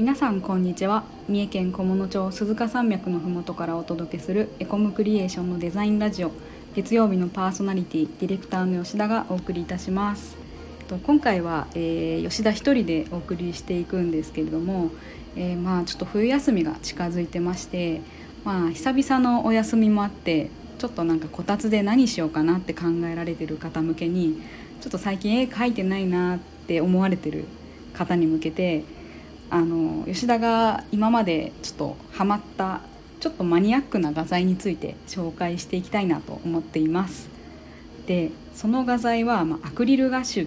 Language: Japanese